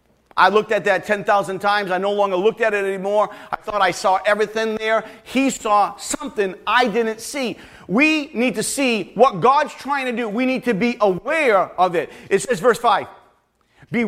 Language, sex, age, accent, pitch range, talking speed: English, male, 40-59, American, 180-230 Hz, 195 wpm